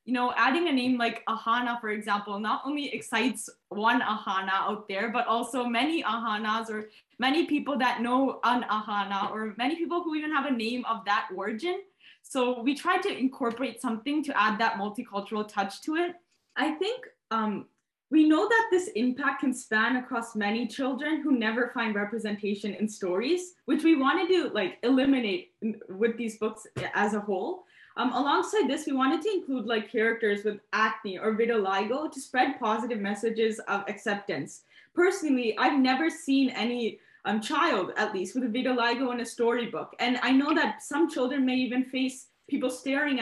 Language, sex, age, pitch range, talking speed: English, female, 10-29, 220-275 Hz, 175 wpm